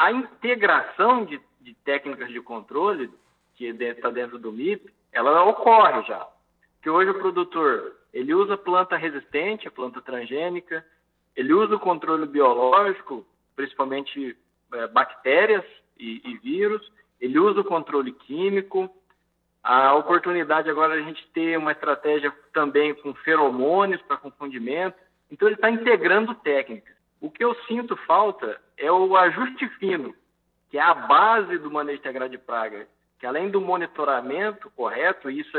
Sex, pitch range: male, 145-215 Hz